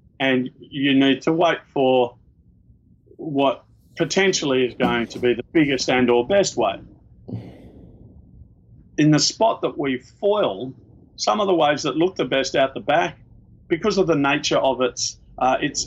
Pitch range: 120-150 Hz